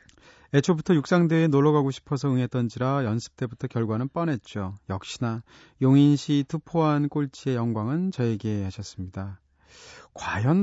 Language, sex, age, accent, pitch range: Korean, male, 40-59, native, 110-155 Hz